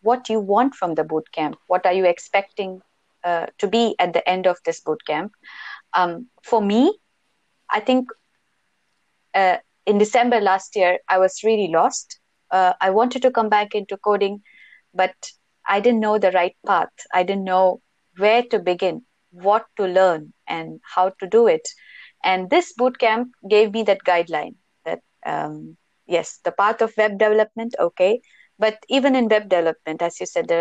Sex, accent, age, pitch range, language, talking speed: female, Indian, 20-39, 180-240 Hz, English, 170 wpm